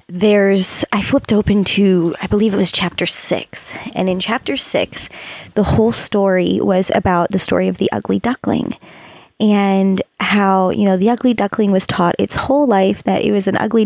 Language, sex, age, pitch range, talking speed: English, female, 20-39, 180-205 Hz, 185 wpm